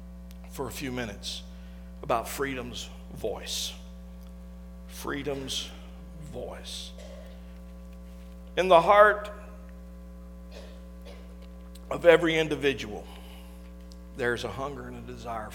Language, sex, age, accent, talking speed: English, male, 50-69, American, 80 wpm